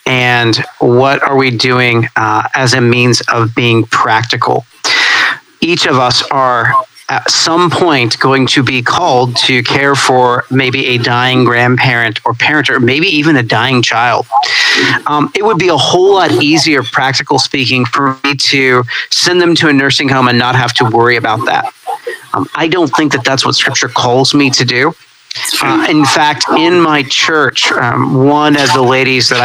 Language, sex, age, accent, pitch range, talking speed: English, male, 40-59, American, 125-150 Hz, 180 wpm